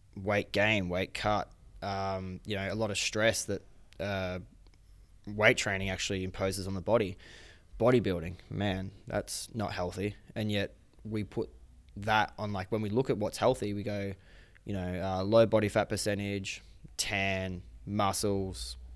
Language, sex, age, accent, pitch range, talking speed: English, male, 20-39, Australian, 95-105 Hz, 155 wpm